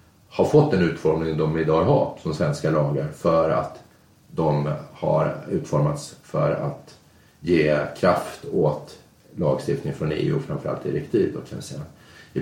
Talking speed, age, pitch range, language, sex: 130 wpm, 30-49, 80-100 Hz, Swedish, male